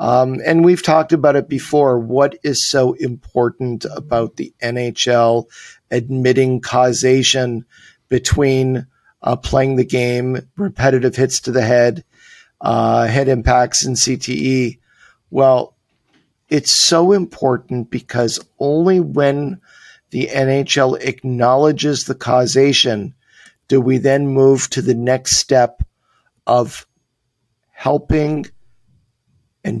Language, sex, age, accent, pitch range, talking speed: English, male, 50-69, American, 120-140 Hz, 110 wpm